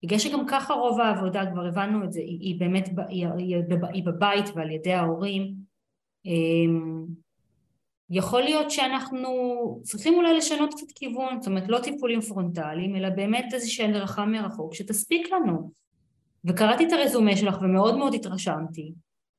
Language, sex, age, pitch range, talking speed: Hebrew, female, 20-39, 165-225 Hz, 140 wpm